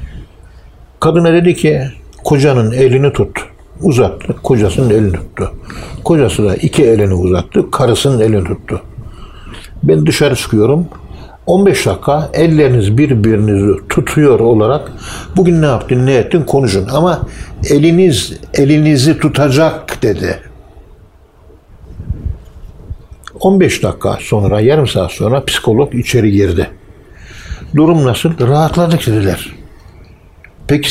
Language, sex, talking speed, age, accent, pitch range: Turkish, male, 100 wpm, 60-79, native, 95-150 Hz